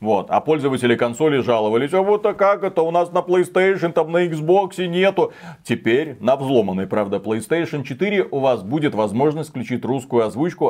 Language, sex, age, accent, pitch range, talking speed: Russian, male, 30-49, native, 120-160 Hz, 170 wpm